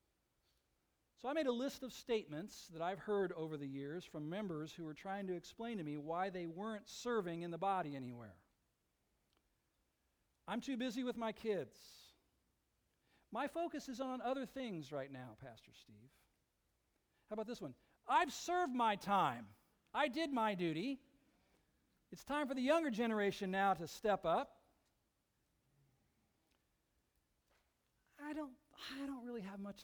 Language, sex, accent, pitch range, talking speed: English, male, American, 145-245 Hz, 150 wpm